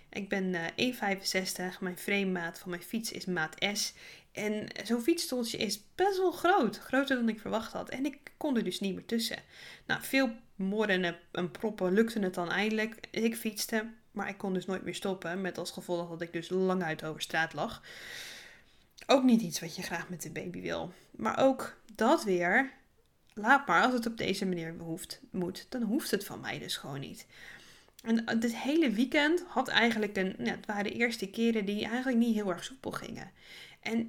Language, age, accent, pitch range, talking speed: Dutch, 10-29, Dutch, 180-235 Hz, 200 wpm